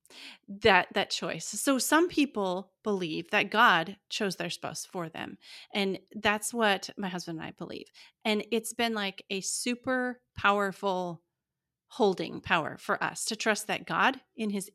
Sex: female